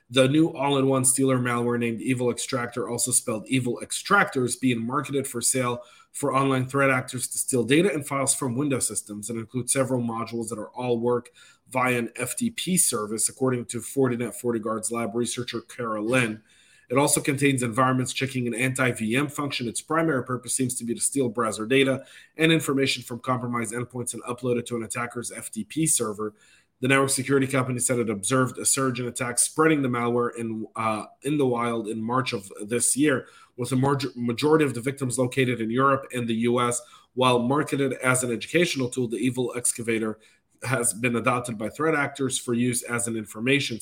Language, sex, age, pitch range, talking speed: English, male, 30-49, 115-135 Hz, 190 wpm